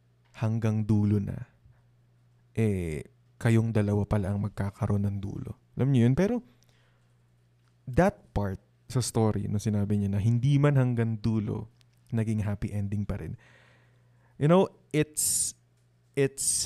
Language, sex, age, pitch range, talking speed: English, male, 20-39, 105-125 Hz, 130 wpm